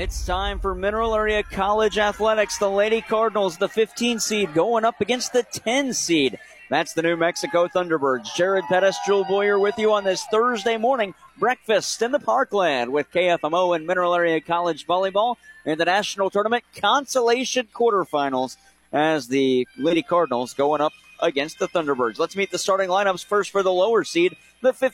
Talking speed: 170 wpm